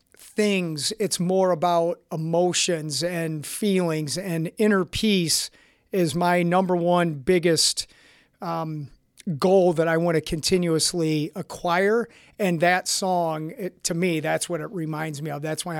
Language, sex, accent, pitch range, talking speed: English, male, American, 165-195 Hz, 135 wpm